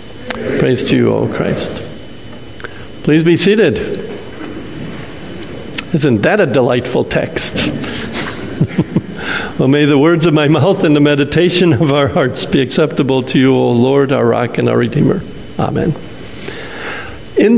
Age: 50-69